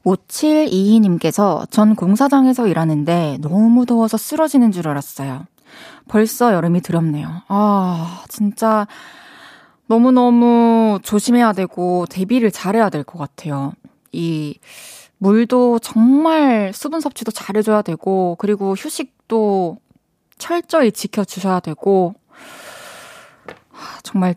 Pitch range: 180-235 Hz